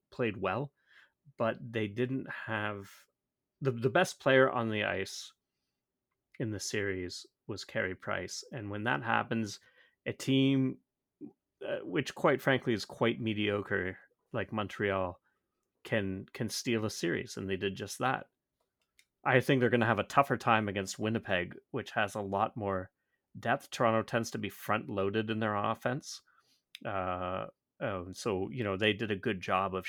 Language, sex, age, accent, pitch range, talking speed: English, male, 30-49, American, 95-115 Hz, 165 wpm